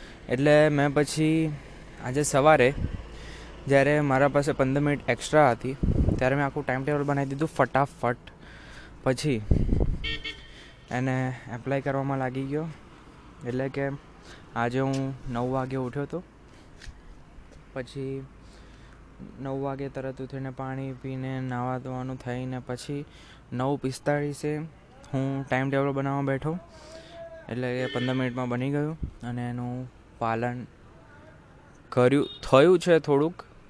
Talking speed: 115 wpm